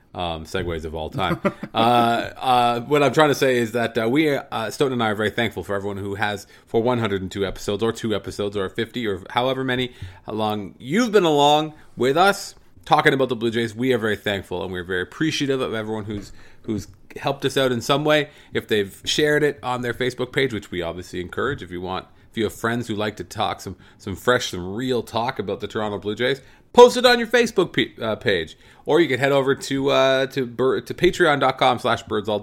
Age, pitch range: 30-49, 100-130 Hz